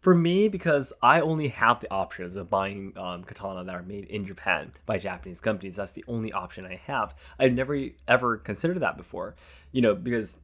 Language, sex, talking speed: English, male, 200 wpm